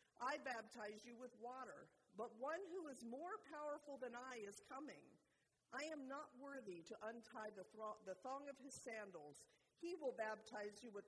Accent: American